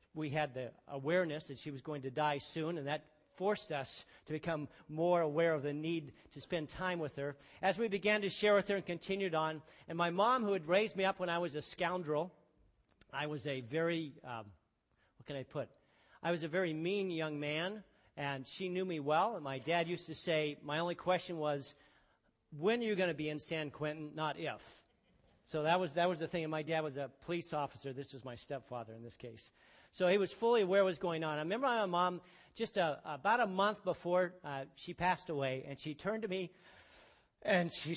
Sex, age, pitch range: male, 50-69, 135-180 Hz